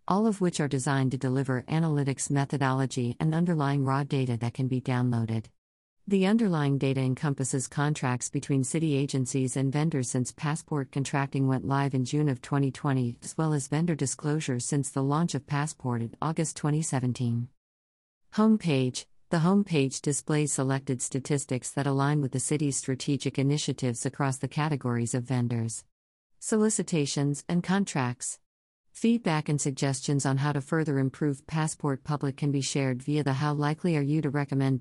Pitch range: 130-155 Hz